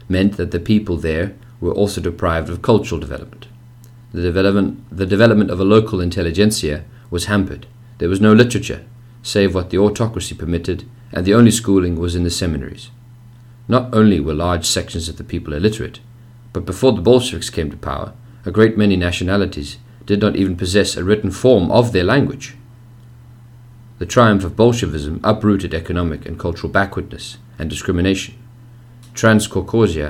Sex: male